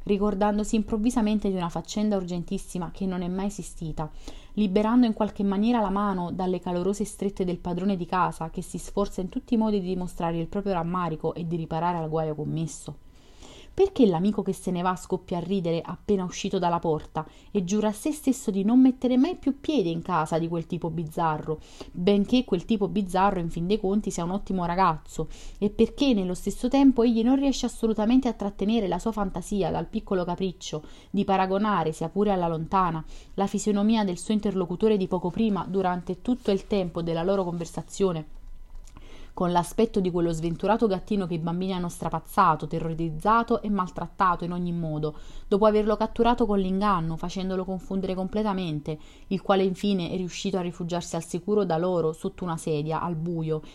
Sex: female